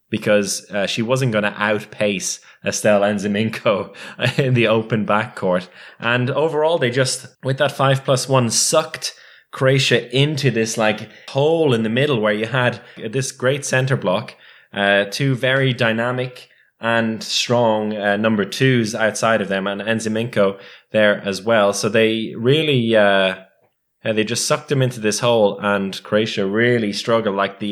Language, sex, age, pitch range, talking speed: English, male, 20-39, 100-125 Hz, 155 wpm